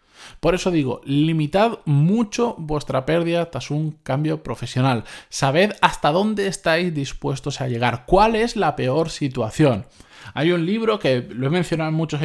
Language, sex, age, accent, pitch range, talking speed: Spanish, male, 20-39, Spanish, 120-160 Hz, 155 wpm